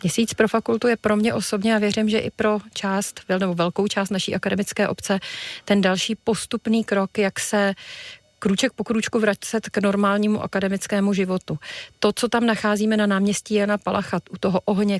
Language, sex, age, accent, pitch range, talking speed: Czech, female, 40-59, native, 190-215 Hz, 175 wpm